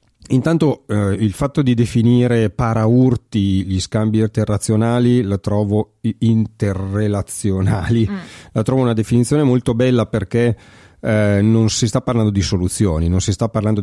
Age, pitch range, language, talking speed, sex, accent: 40-59, 95-120 Hz, Italian, 135 wpm, male, native